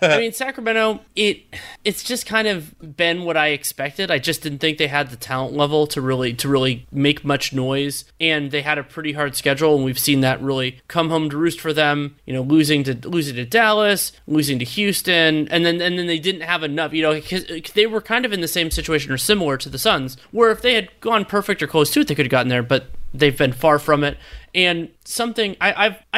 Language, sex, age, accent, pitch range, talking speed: English, male, 30-49, American, 140-180 Hz, 240 wpm